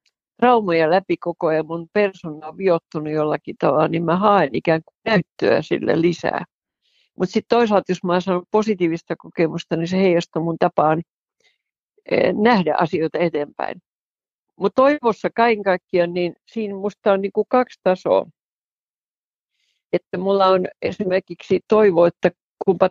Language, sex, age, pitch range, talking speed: Finnish, female, 50-69, 165-210 Hz, 135 wpm